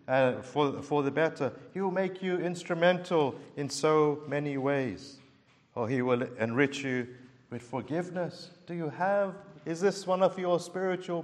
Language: English